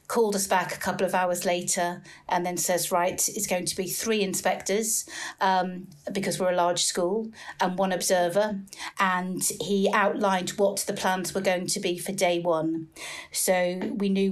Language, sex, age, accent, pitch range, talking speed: English, female, 50-69, British, 175-195 Hz, 180 wpm